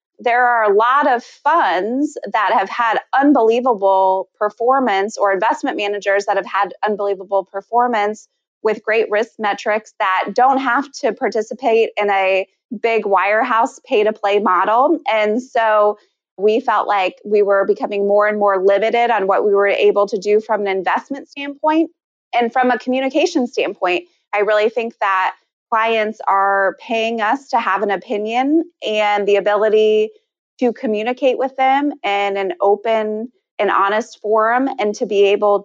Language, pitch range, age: English, 205-245 Hz, 20-39